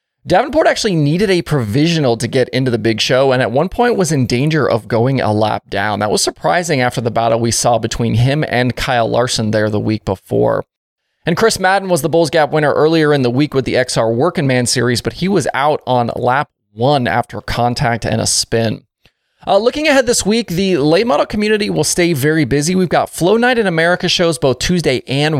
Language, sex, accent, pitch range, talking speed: English, male, American, 120-175 Hz, 220 wpm